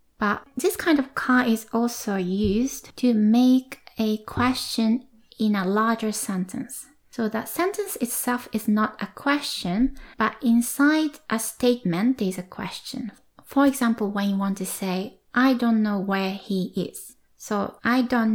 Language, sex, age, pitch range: Japanese, female, 20-39, 200-255 Hz